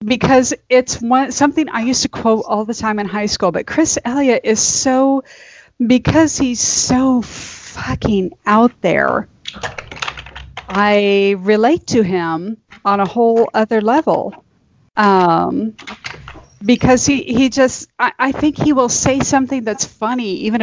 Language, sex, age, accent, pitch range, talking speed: English, female, 40-59, American, 200-260 Hz, 145 wpm